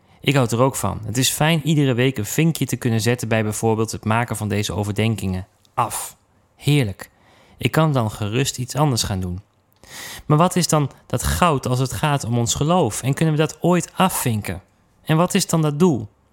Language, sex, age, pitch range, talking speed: Dutch, male, 30-49, 105-150 Hz, 205 wpm